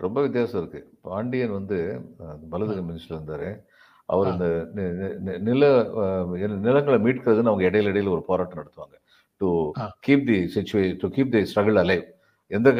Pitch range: 100-140 Hz